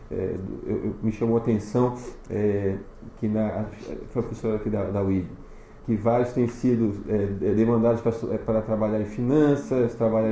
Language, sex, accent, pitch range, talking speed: Portuguese, male, Brazilian, 110-130 Hz, 165 wpm